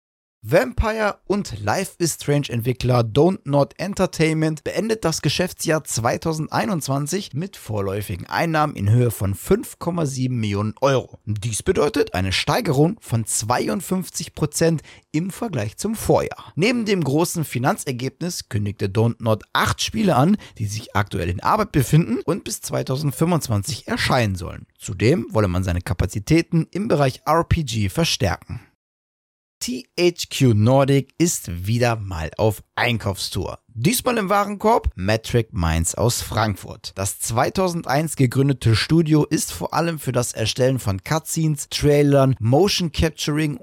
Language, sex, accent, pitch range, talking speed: German, male, German, 110-160 Hz, 125 wpm